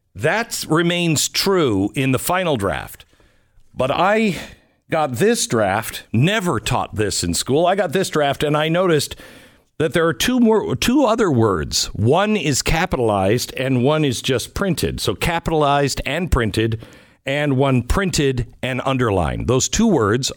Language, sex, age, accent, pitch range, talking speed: English, male, 60-79, American, 110-165 Hz, 155 wpm